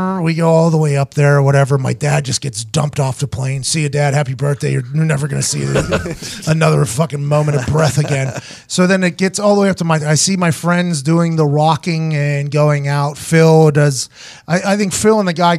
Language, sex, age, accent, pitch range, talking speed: English, male, 30-49, American, 150-210 Hz, 235 wpm